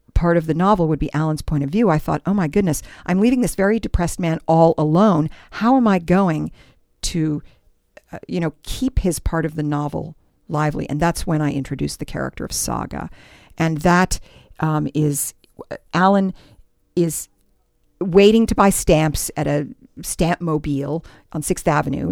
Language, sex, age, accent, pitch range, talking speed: English, female, 50-69, American, 150-205 Hz, 175 wpm